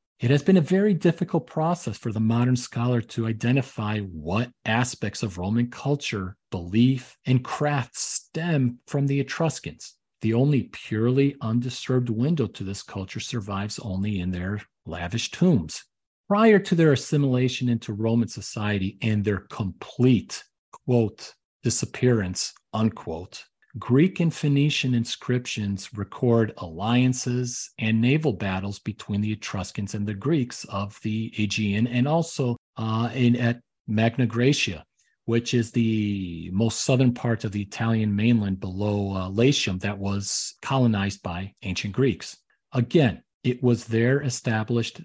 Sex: male